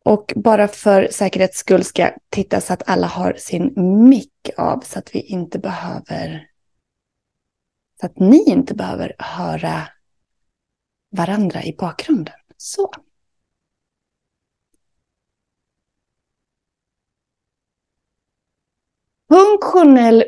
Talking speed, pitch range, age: 90 wpm, 170-245 Hz, 30-49